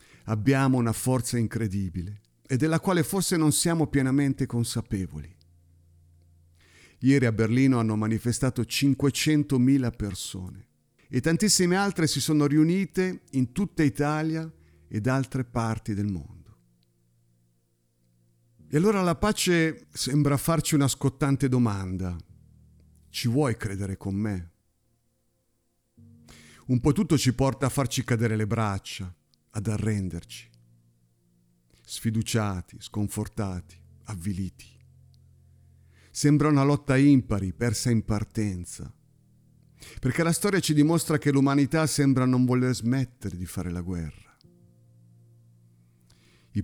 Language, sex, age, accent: Italian, male, 50-69, native